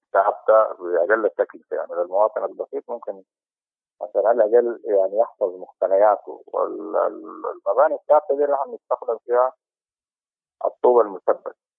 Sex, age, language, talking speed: male, 50-69, English, 100 wpm